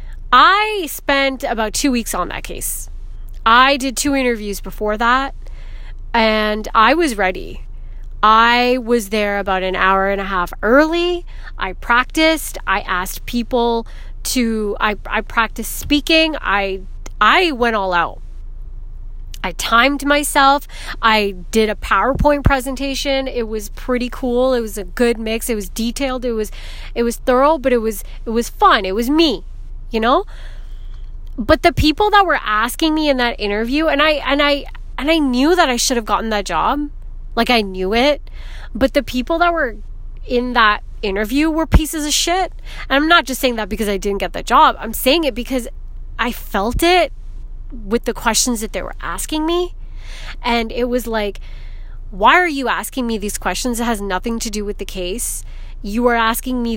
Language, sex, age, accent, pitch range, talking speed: English, female, 30-49, American, 215-280 Hz, 180 wpm